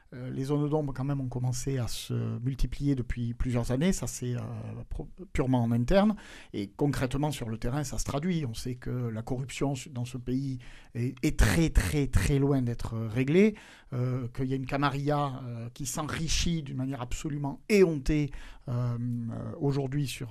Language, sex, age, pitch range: French, male, 50-69, 120-150 Hz